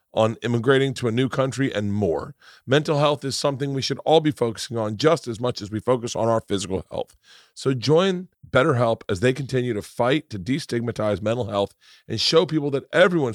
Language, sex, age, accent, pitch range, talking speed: English, male, 40-59, American, 100-130 Hz, 200 wpm